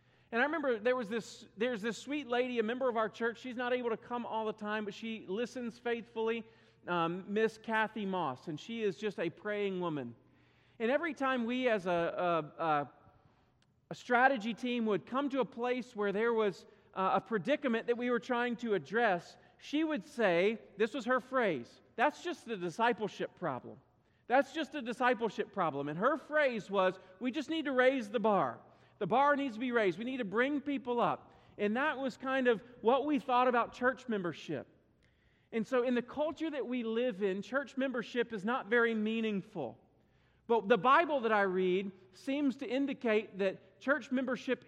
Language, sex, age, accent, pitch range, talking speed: English, male, 40-59, American, 200-255 Hz, 195 wpm